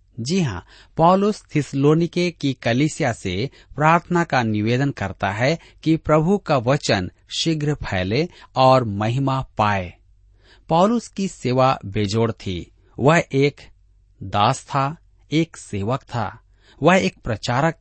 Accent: native